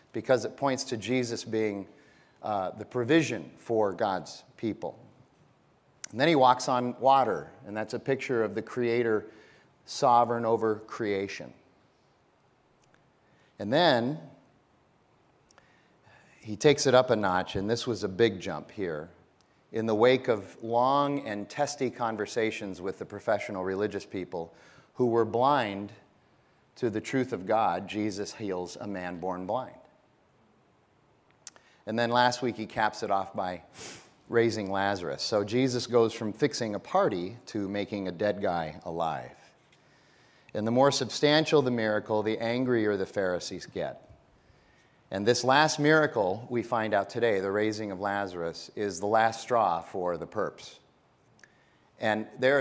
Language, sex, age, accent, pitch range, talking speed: English, male, 40-59, American, 100-125 Hz, 145 wpm